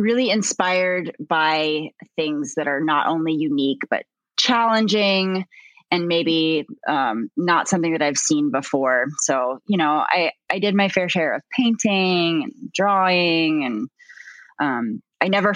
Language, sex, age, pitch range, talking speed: English, female, 20-39, 160-210 Hz, 145 wpm